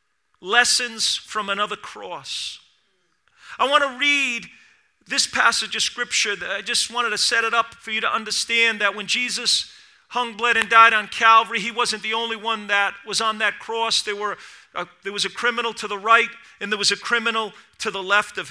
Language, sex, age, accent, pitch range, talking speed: English, male, 40-59, American, 205-245 Hz, 200 wpm